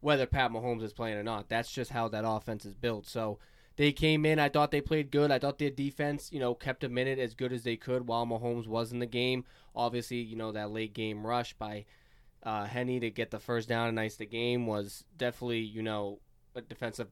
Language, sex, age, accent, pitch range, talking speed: English, male, 20-39, American, 110-130 Hz, 235 wpm